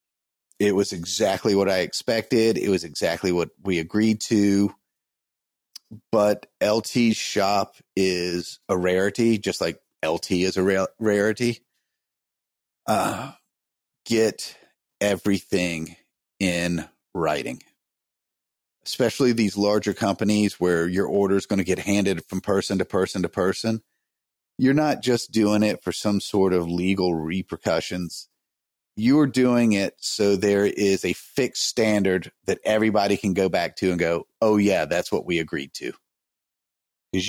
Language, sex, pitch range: English, male, 90-110 Hz